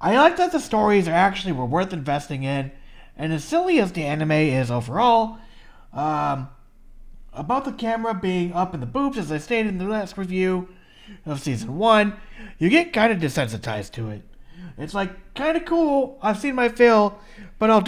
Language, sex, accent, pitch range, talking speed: English, male, American, 135-225 Hz, 180 wpm